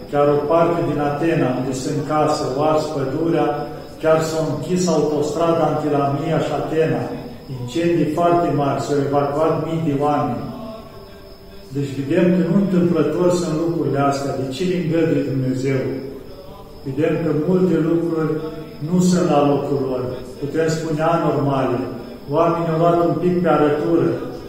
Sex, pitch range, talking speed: male, 145-165 Hz, 140 wpm